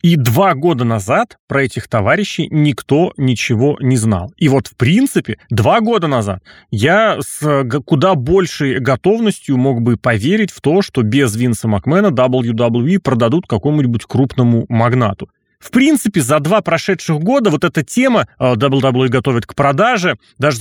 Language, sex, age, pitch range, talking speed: Russian, male, 30-49, 120-165 Hz, 150 wpm